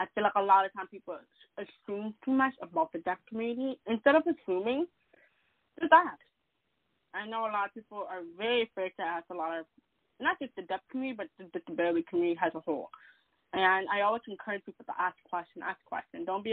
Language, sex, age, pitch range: English, female, 20-39, 190-255 Hz